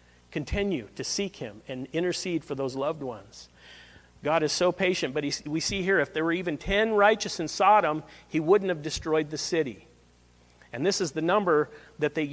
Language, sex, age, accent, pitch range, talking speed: English, male, 50-69, American, 135-180 Hz, 190 wpm